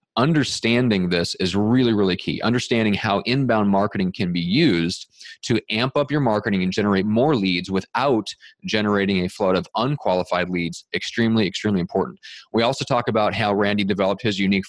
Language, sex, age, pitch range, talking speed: English, male, 30-49, 95-120 Hz, 170 wpm